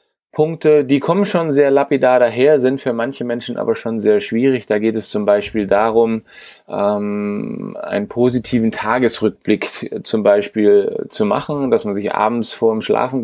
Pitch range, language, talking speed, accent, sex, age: 110-130 Hz, German, 165 wpm, German, male, 30-49